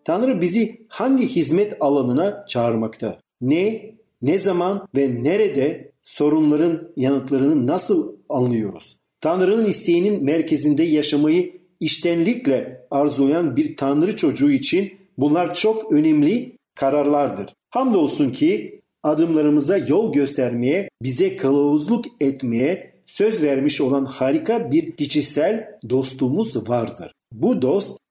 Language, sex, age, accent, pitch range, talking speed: Turkish, male, 50-69, native, 140-230 Hz, 100 wpm